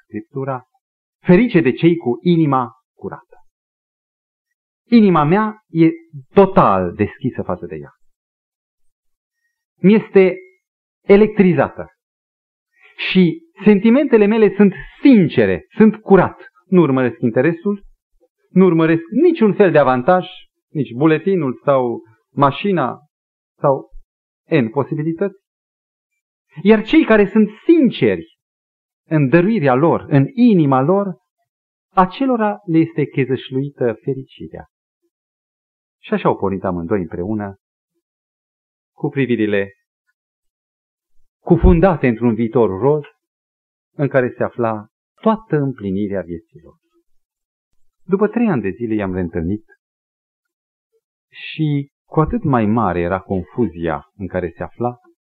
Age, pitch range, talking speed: 40-59, 125-205 Hz, 100 wpm